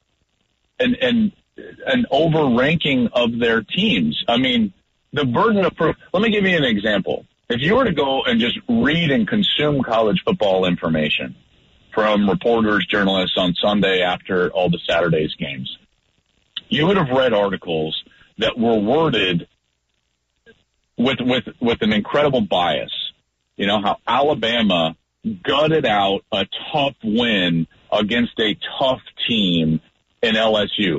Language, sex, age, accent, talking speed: English, male, 40-59, American, 135 wpm